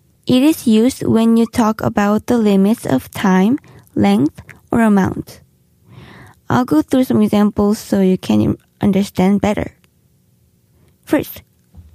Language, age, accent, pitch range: Korean, 20-39, native, 200-260 Hz